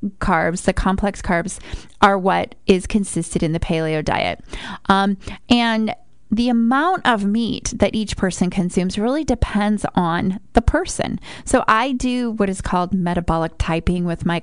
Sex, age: female, 20-39